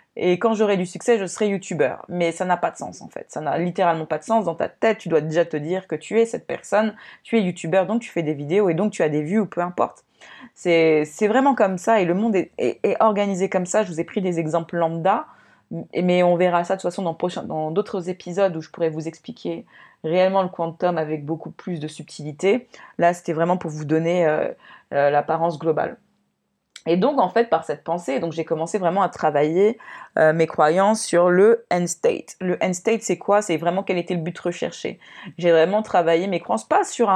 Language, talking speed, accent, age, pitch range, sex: French, 240 wpm, French, 20-39, 165-205 Hz, female